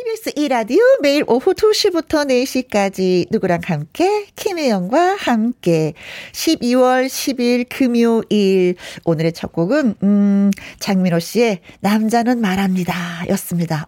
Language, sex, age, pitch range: Korean, female, 40-59, 200-280 Hz